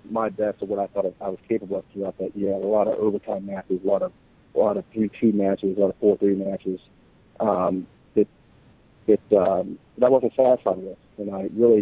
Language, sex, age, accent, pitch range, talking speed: English, male, 40-59, American, 100-115 Hz, 235 wpm